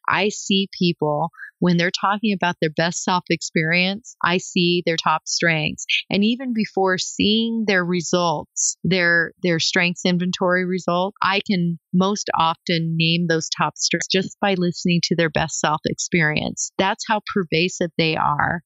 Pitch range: 165-195 Hz